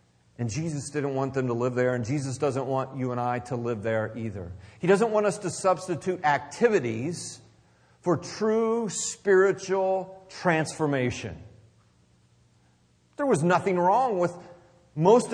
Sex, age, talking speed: male, 40-59, 140 wpm